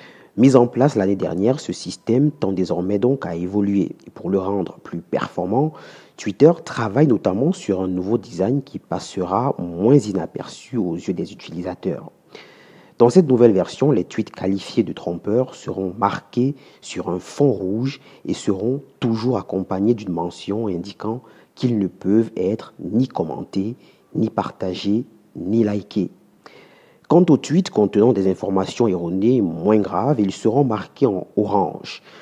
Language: French